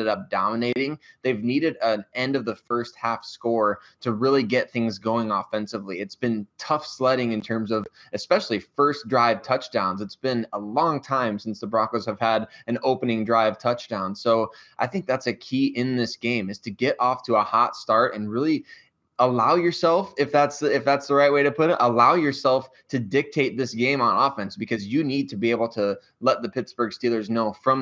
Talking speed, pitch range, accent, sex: 205 wpm, 110-130 Hz, American, male